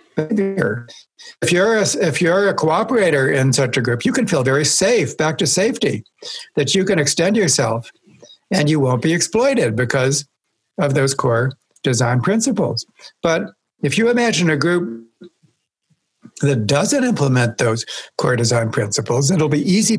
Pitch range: 130-180 Hz